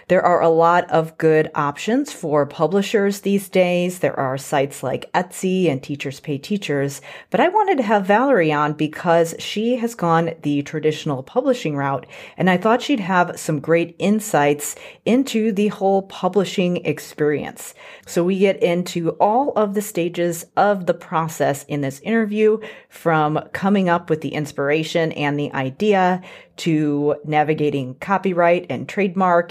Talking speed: 155 wpm